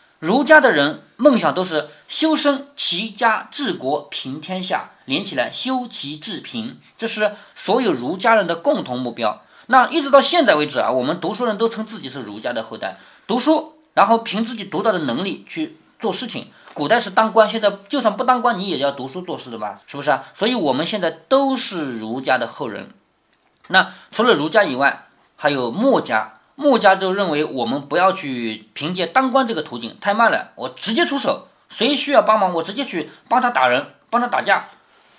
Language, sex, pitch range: Chinese, male, 165-265 Hz